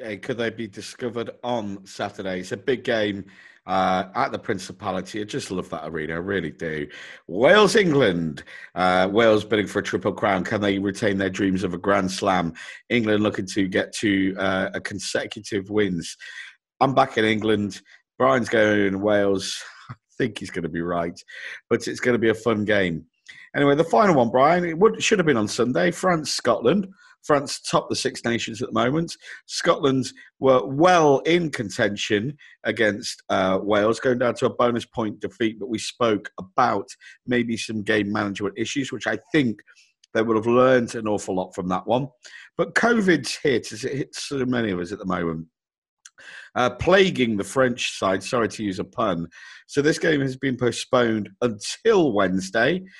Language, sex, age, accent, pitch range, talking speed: English, male, 50-69, British, 95-130 Hz, 180 wpm